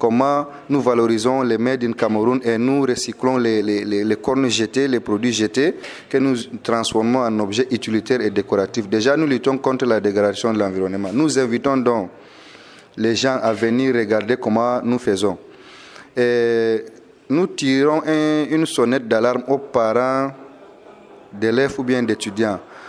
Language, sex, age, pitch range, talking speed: English, male, 30-49, 115-140 Hz, 150 wpm